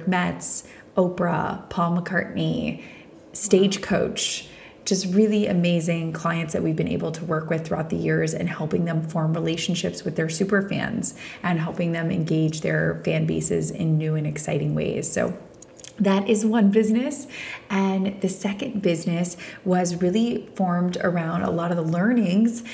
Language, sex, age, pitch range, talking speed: English, female, 20-39, 165-195 Hz, 155 wpm